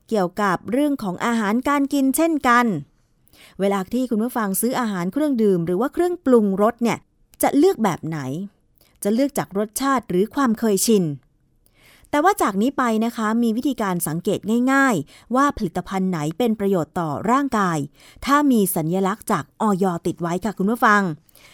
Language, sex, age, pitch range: Thai, female, 20-39, 190-255 Hz